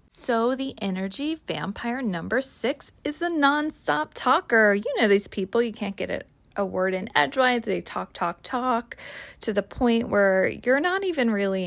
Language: English